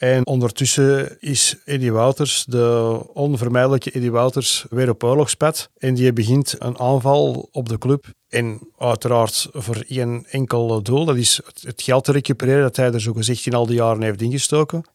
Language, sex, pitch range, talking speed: Dutch, male, 120-135 Hz, 170 wpm